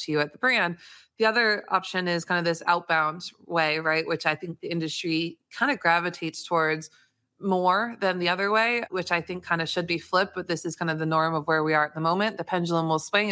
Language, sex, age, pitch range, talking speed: English, female, 20-39, 160-190 Hz, 250 wpm